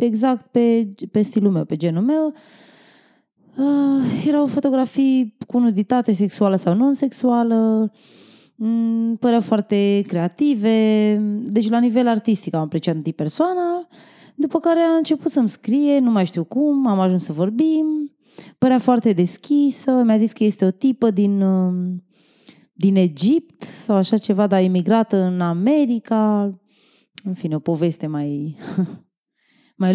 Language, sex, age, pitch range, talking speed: Romanian, female, 20-39, 190-265 Hz, 135 wpm